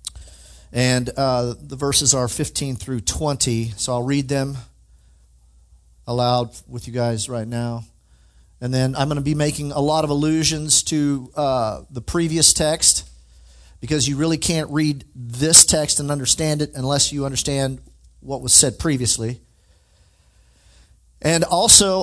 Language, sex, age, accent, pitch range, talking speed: English, male, 40-59, American, 95-145 Hz, 145 wpm